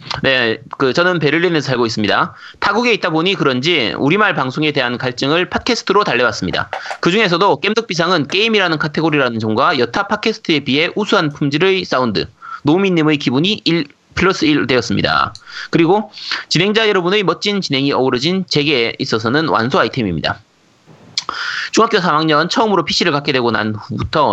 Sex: male